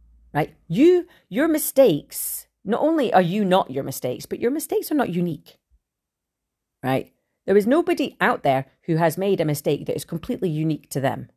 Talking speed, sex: 180 wpm, female